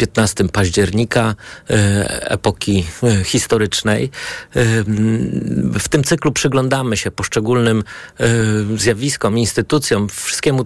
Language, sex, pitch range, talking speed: Polish, male, 105-130 Hz, 75 wpm